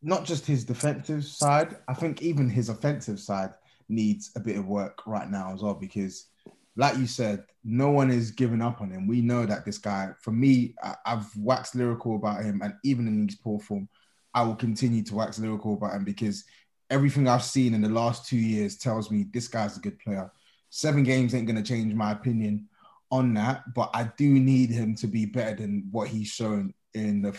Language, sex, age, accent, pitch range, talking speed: English, male, 20-39, British, 105-130 Hz, 210 wpm